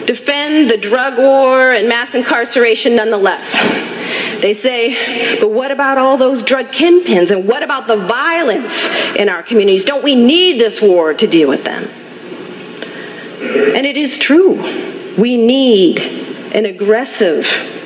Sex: female